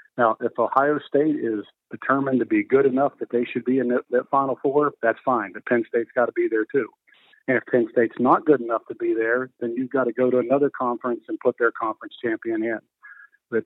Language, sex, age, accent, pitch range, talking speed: English, male, 50-69, American, 115-140 Hz, 235 wpm